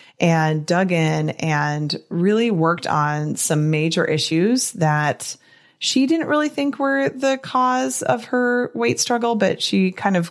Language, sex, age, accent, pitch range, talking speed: English, female, 20-39, American, 155-195 Hz, 150 wpm